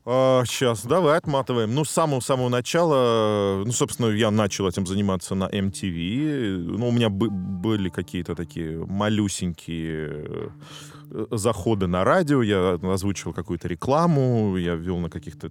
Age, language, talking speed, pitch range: 20-39, Russian, 130 wpm, 90-115 Hz